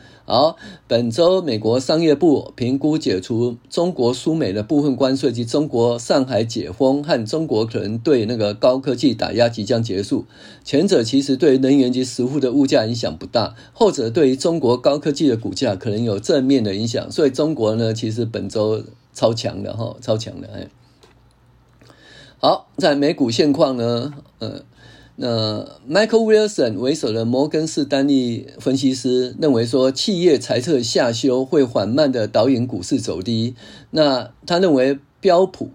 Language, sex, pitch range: Chinese, male, 115-145 Hz